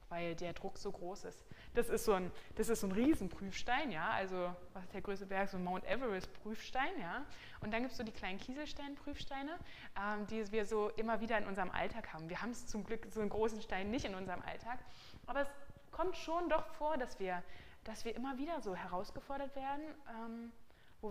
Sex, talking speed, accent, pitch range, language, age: female, 215 wpm, German, 195-235 Hz, German, 20-39